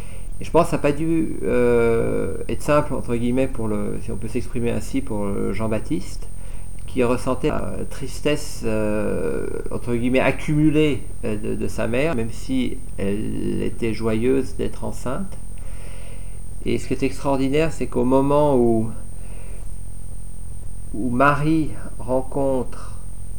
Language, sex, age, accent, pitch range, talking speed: French, male, 50-69, French, 90-130 Hz, 135 wpm